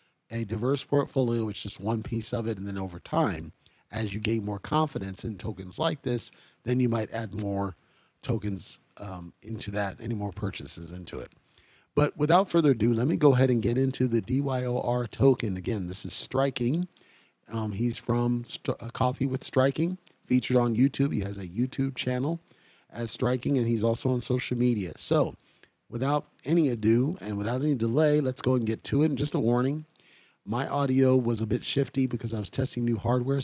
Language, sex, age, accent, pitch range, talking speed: English, male, 40-59, American, 110-130 Hz, 190 wpm